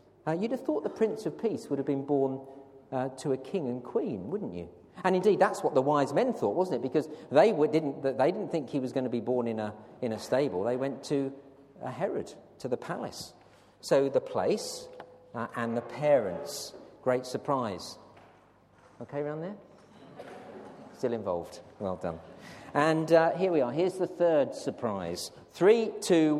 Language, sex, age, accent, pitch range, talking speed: English, male, 40-59, British, 150-225 Hz, 190 wpm